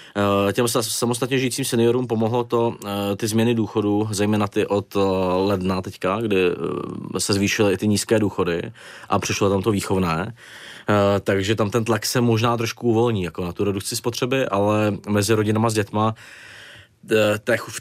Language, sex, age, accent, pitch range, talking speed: Czech, male, 20-39, native, 100-120 Hz, 150 wpm